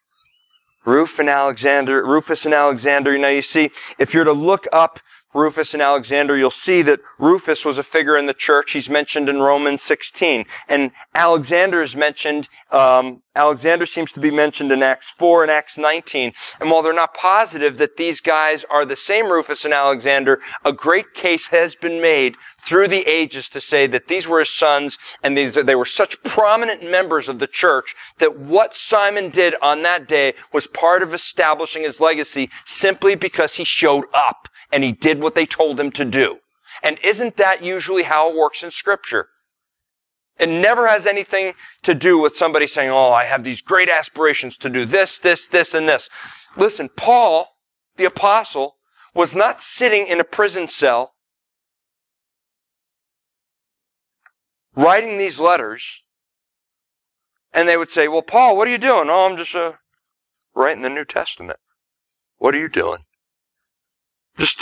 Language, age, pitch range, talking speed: English, 40-59, 140-185 Hz, 170 wpm